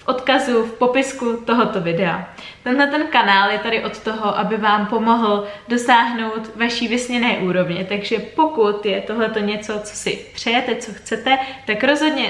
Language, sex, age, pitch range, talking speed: Czech, female, 20-39, 205-235 Hz, 150 wpm